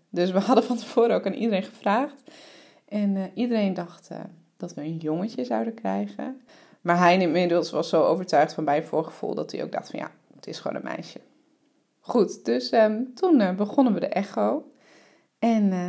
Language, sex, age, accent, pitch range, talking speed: English, female, 20-39, Dutch, 180-235 Hz, 195 wpm